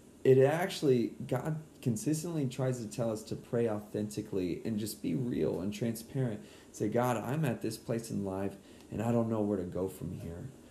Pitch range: 100-125 Hz